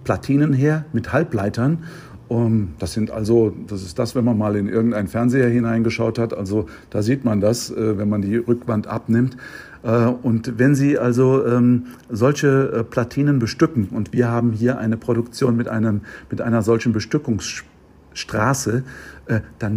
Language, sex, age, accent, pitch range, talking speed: German, male, 50-69, German, 110-130 Hz, 145 wpm